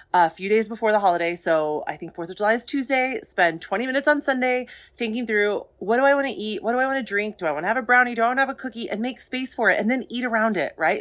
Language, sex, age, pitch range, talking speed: English, female, 30-49, 190-255 Hz, 315 wpm